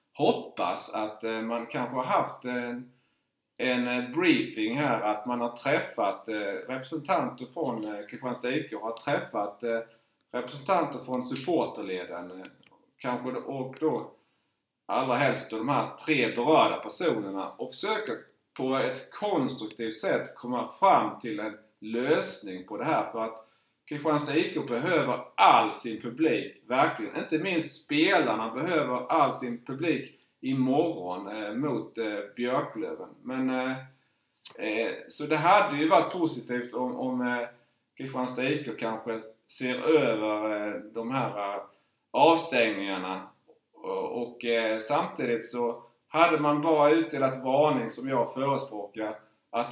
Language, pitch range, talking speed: Swedish, 115-140 Hz, 120 wpm